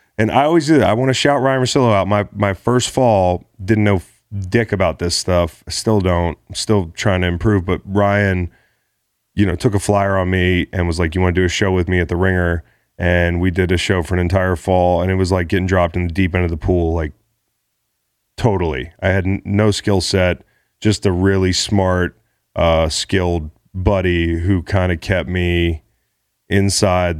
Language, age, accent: English, 30-49, American